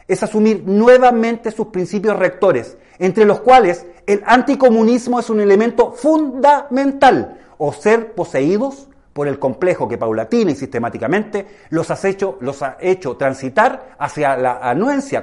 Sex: male